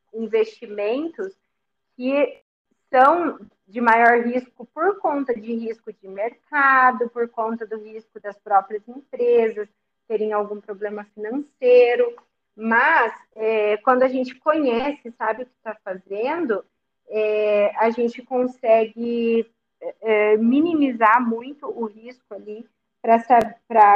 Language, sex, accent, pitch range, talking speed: Portuguese, female, Brazilian, 215-250 Hz, 105 wpm